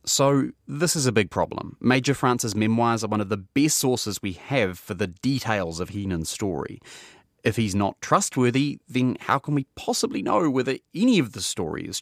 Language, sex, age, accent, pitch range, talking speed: English, male, 30-49, Australian, 95-125 Hz, 195 wpm